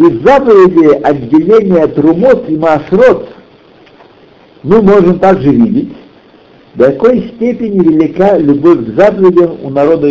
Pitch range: 140-215 Hz